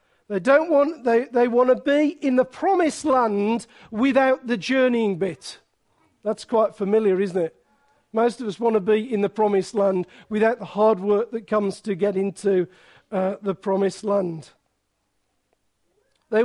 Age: 50-69